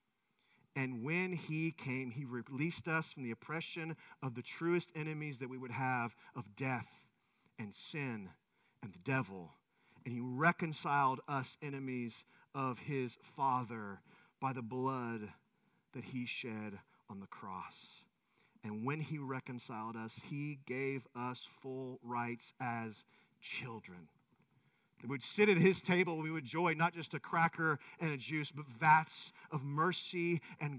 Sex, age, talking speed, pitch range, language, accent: male, 40-59, 150 wpm, 125-175 Hz, English, American